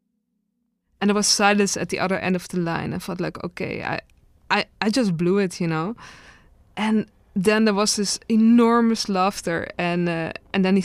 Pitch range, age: 175-205 Hz, 20-39